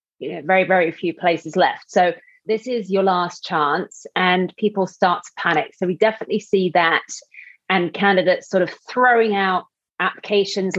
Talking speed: 165 wpm